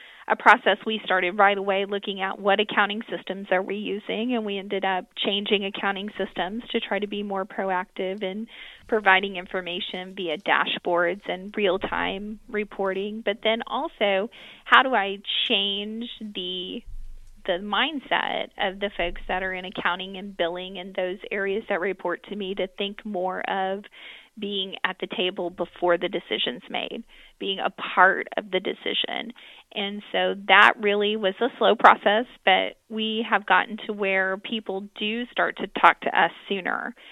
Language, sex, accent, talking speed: English, female, American, 165 wpm